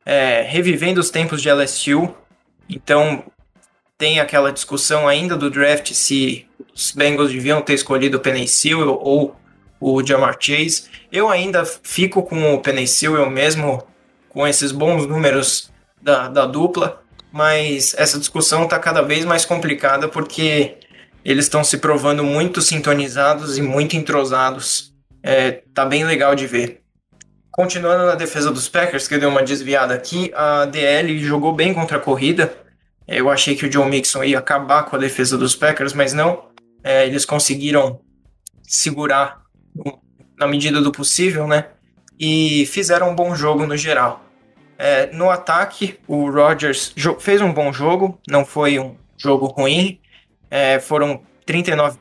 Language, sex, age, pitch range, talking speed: Portuguese, male, 20-39, 140-160 Hz, 150 wpm